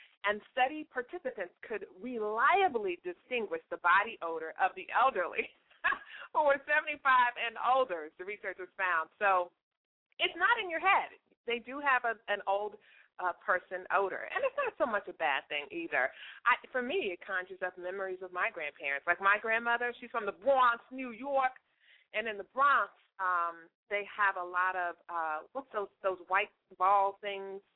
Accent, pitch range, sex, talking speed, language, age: American, 195-300 Hz, female, 175 wpm, English, 40-59